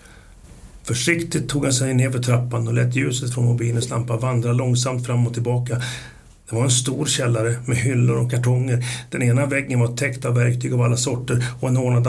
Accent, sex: native, male